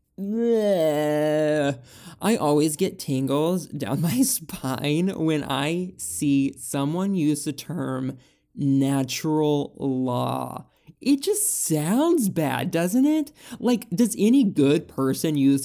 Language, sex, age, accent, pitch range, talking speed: English, male, 20-39, American, 135-185 Hz, 105 wpm